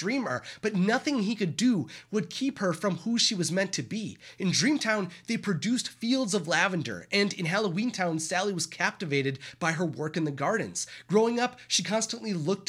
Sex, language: male, English